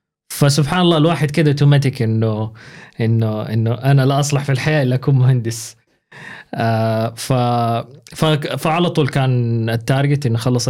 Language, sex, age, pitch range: Arabic, male, 20-39, 115-145 Hz